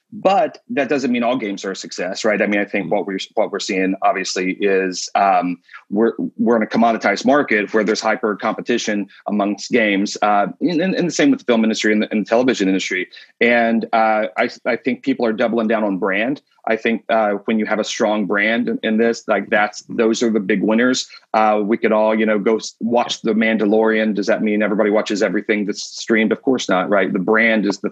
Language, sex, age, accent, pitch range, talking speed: English, male, 30-49, American, 100-110 Hz, 225 wpm